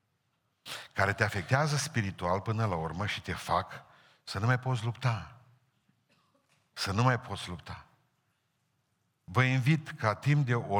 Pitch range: 100-130 Hz